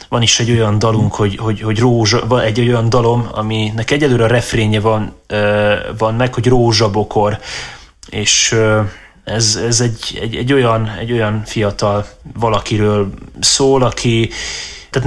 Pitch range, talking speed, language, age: 110-125 Hz, 140 wpm, Hungarian, 20-39